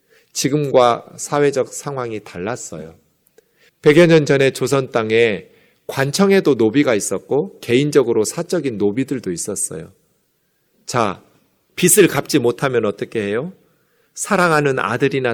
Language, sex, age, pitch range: Korean, male, 40-59, 135-195 Hz